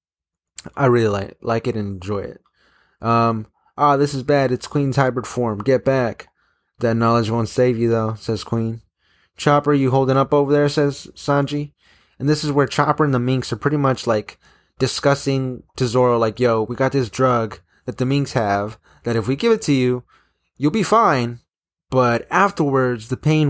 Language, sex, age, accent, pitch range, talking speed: English, male, 20-39, American, 110-135 Hz, 195 wpm